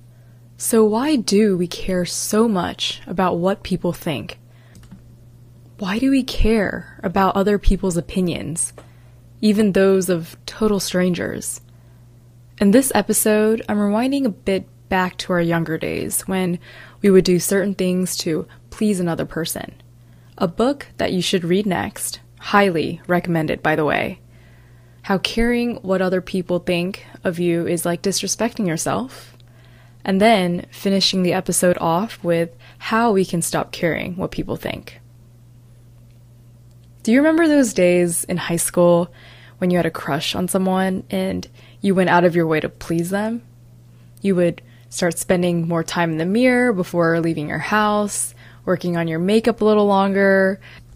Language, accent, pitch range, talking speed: English, American, 120-195 Hz, 155 wpm